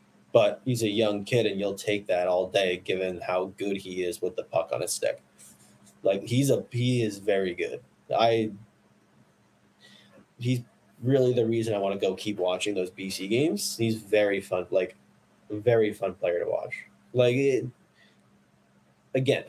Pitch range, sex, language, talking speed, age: 90-115 Hz, male, English, 170 wpm, 20-39